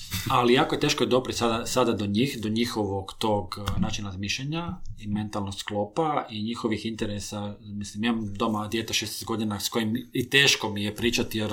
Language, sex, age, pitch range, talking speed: Croatian, male, 30-49, 105-125 Hz, 185 wpm